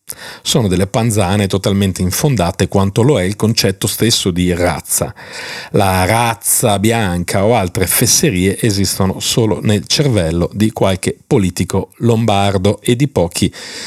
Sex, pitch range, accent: male, 95-120 Hz, native